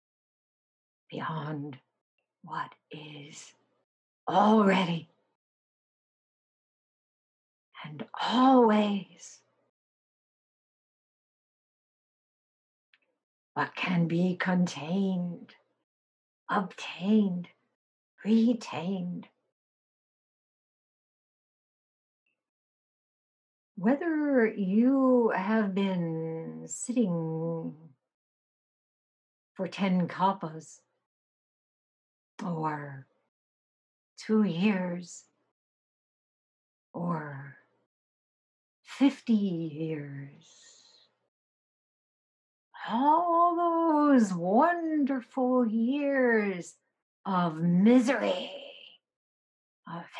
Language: English